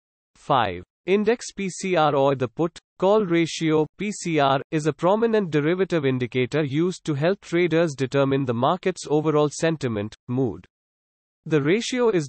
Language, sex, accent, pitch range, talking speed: English, male, Indian, 140-180 Hz, 125 wpm